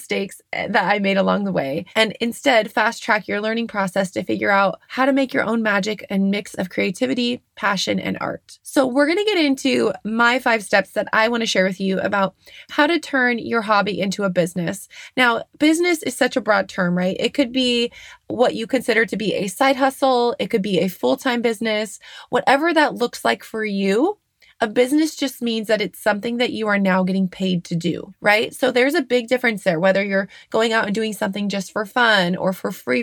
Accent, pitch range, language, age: American, 195-250 Hz, English, 20-39